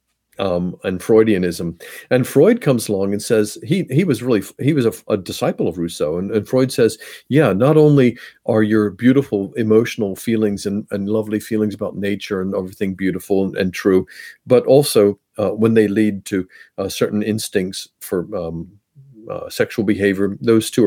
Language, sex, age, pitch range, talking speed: English, male, 50-69, 100-135 Hz, 175 wpm